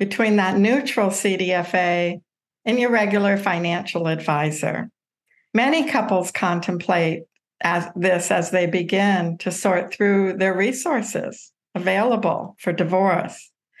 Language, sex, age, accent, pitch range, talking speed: English, female, 60-79, American, 180-225 Hz, 105 wpm